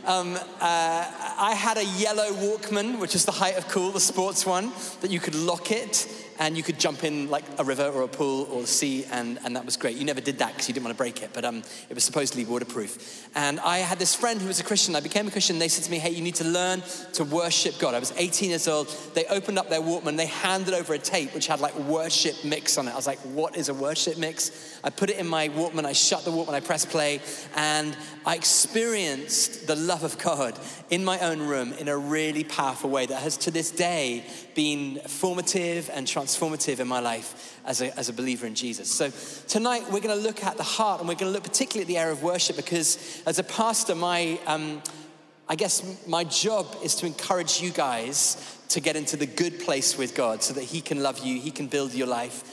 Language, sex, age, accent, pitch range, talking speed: English, male, 20-39, British, 145-185 Hz, 245 wpm